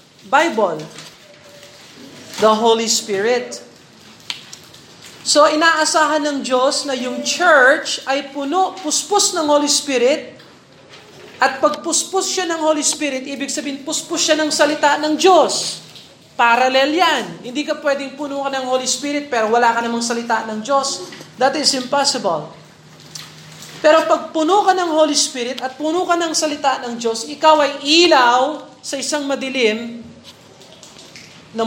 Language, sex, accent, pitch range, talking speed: Filipino, male, native, 220-295 Hz, 135 wpm